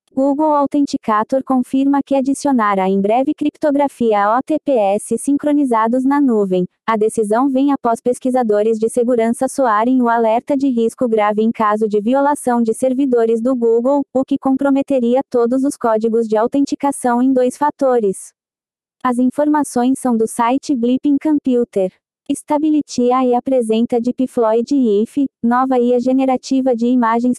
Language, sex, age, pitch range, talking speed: Portuguese, female, 20-39, 230-275 Hz, 135 wpm